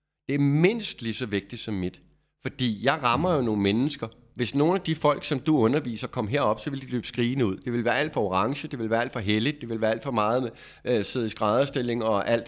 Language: Danish